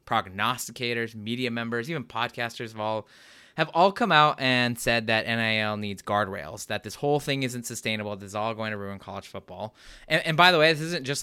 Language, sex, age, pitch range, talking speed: English, male, 20-39, 105-135 Hz, 210 wpm